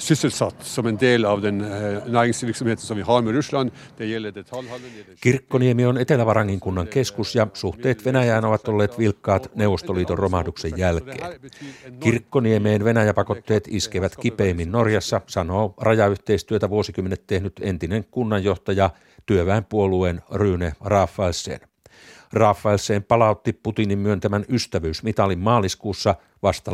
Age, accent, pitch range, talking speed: 60-79, native, 95-115 Hz, 80 wpm